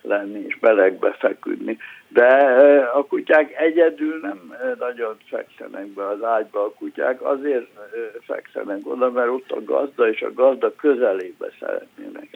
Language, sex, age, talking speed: Hungarian, male, 60-79, 135 wpm